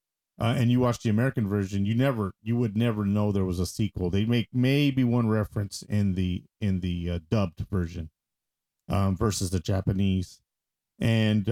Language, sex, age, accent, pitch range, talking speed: English, male, 40-59, American, 95-120 Hz, 175 wpm